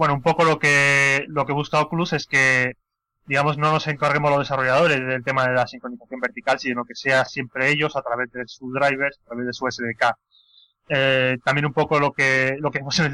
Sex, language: male, Spanish